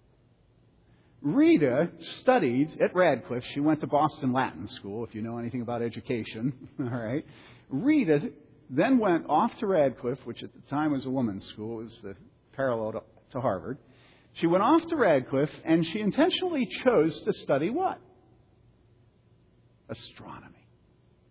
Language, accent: English, American